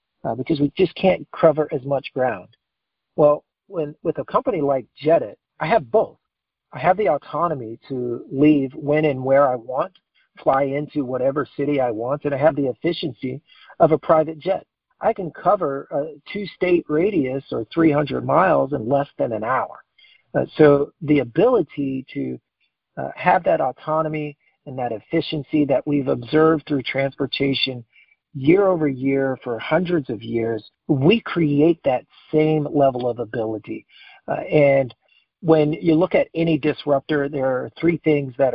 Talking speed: 160 wpm